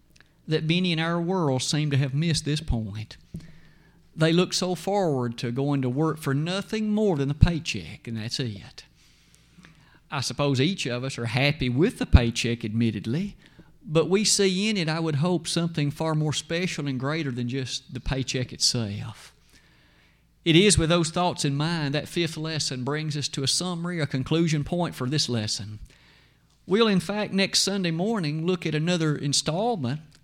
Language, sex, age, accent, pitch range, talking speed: English, male, 50-69, American, 135-180 Hz, 175 wpm